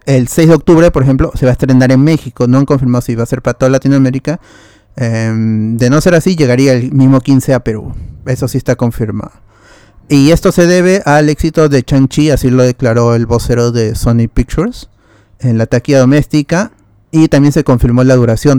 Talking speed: 205 wpm